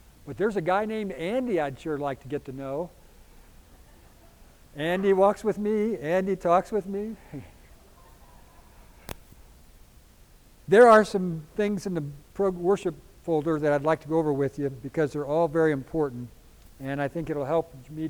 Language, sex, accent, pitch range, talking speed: English, male, American, 145-190 Hz, 160 wpm